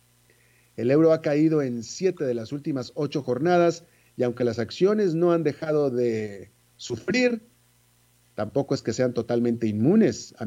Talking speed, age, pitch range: 155 wpm, 40-59, 115-165 Hz